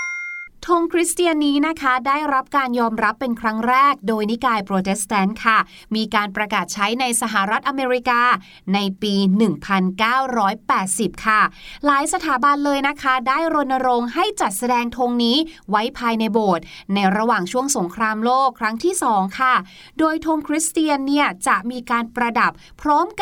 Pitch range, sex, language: 210-285 Hz, female, Thai